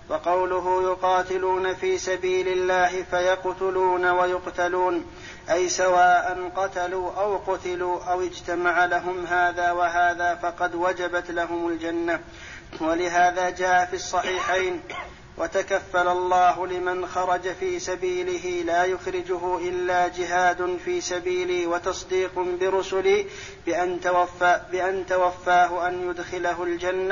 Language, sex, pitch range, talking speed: Arabic, male, 180-185 Hz, 100 wpm